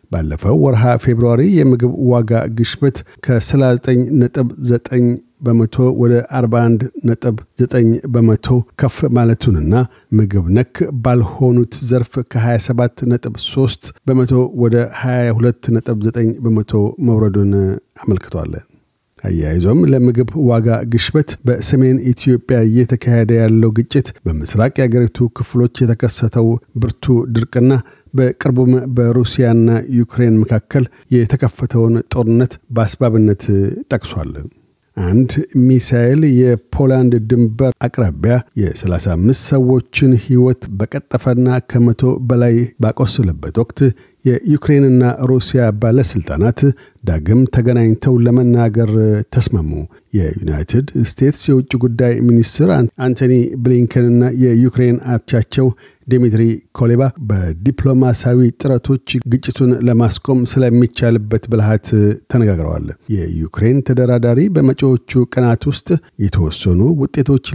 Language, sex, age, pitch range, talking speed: Amharic, male, 50-69, 115-130 Hz, 80 wpm